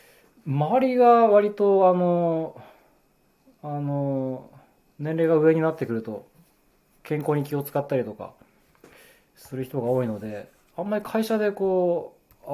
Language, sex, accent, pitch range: Japanese, male, native, 115-155 Hz